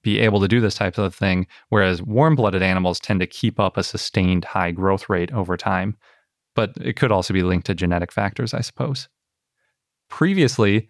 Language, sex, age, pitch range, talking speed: English, male, 30-49, 95-110 Hz, 185 wpm